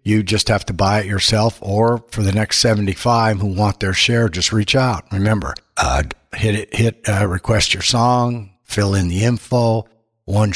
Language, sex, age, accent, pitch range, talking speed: English, male, 60-79, American, 95-115 Hz, 180 wpm